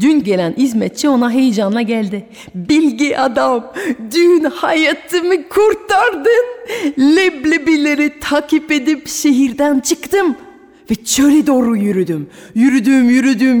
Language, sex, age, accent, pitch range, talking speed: Turkish, female, 40-59, native, 190-275 Hz, 95 wpm